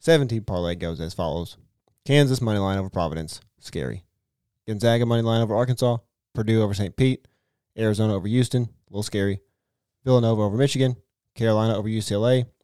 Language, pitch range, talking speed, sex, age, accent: English, 100-125 Hz, 150 wpm, male, 30-49, American